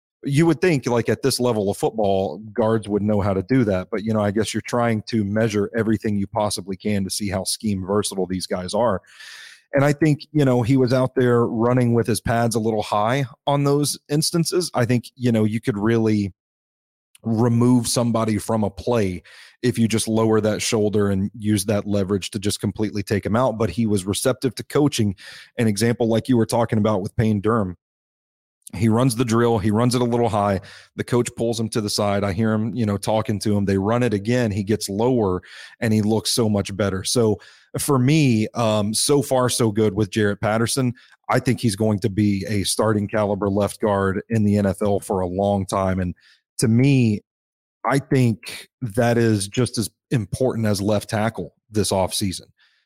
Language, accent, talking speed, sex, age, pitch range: English, American, 205 wpm, male, 30-49, 105-120 Hz